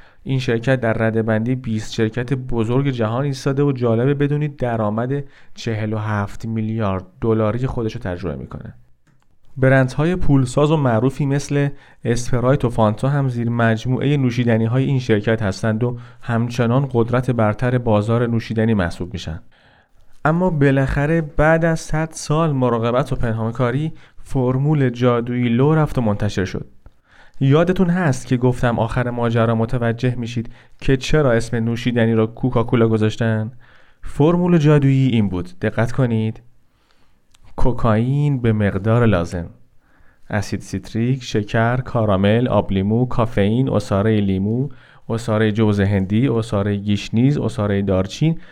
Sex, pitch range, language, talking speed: male, 110-130 Hz, Persian, 125 wpm